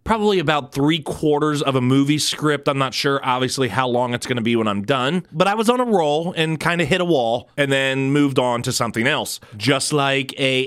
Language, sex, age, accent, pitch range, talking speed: English, male, 30-49, American, 120-160 Hz, 240 wpm